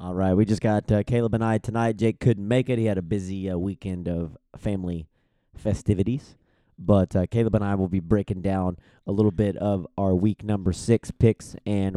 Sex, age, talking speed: male, 30-49, 210 wpm